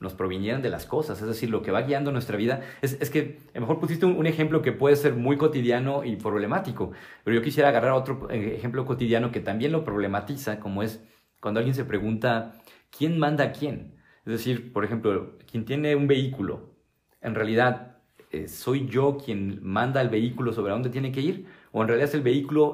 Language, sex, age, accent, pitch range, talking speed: Spanish, male, 40-59, Mexican, 105-135 Hz, 210 wpm